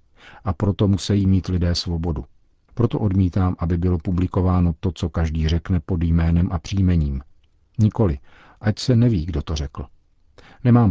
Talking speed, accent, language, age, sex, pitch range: 150 wpm, native, Czech, 50-69, male, 85-100 Hz